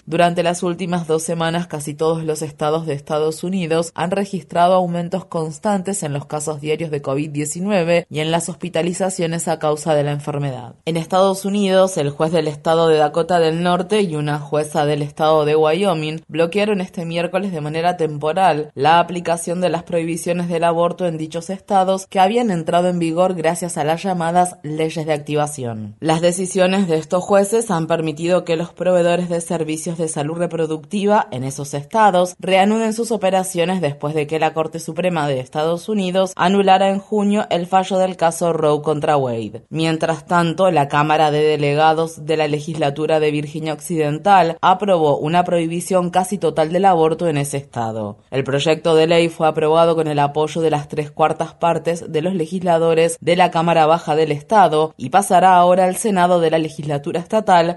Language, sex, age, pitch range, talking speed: Spanish, female, 20-39, 155-180 Hz, 180 wpm